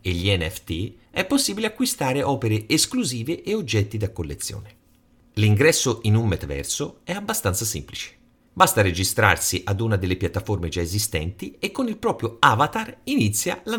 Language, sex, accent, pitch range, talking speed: Italian, male, native, 100-145 Hz, 150 wpm